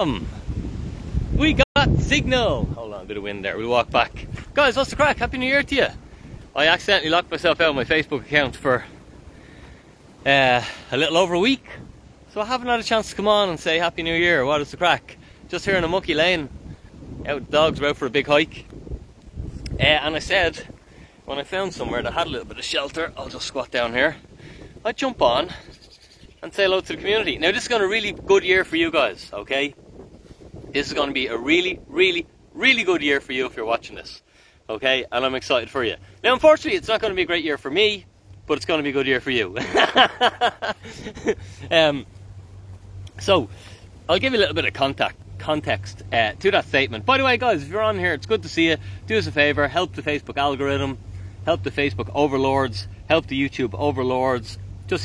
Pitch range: 115-190 Hz